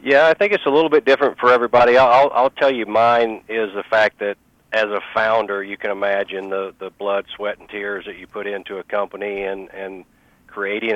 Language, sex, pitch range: English, male, 95-105 Hz